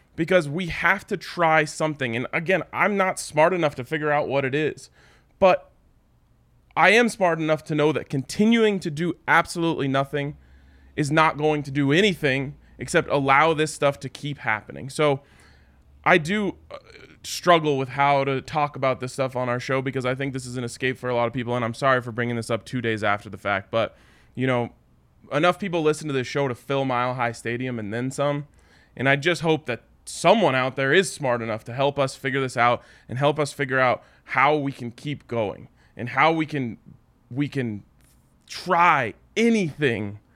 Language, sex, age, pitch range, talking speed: English, male, 20-39, 120-150 Hz, 200 wpm